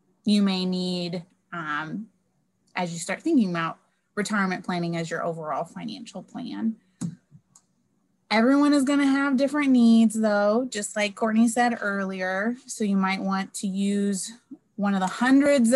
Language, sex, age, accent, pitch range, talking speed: English, female, 20-39, American, 175-225 Hz, 145 wpm